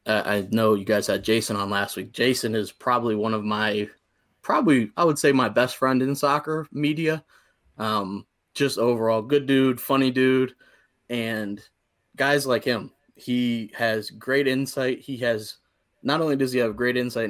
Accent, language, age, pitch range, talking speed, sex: American, English, 20-39, 110-130 Hz, 175 wpm, male